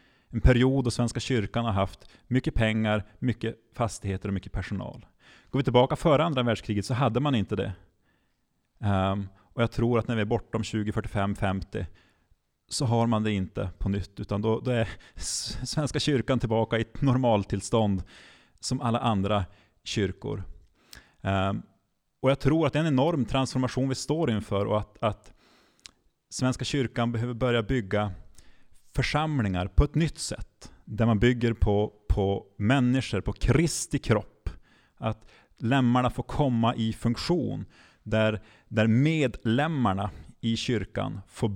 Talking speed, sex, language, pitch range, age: 145 wpm, male, Swedish, 100-130 Hz, 30-49